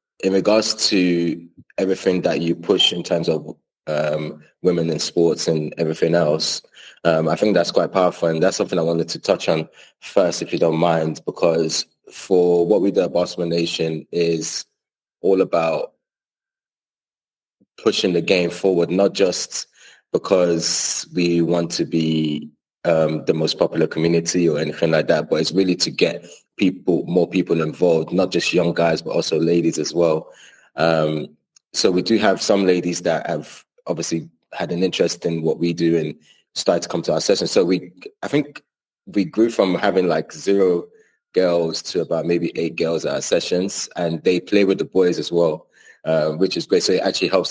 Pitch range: 80-90 Hz